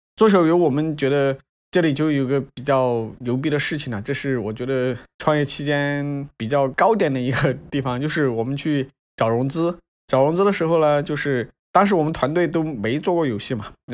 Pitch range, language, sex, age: 125-165 Hz, Chinese, male, 20-39